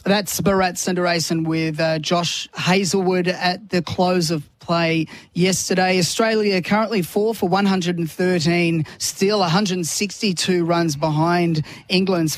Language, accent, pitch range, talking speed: English, Australian, 165-195 Hz, 110 wpm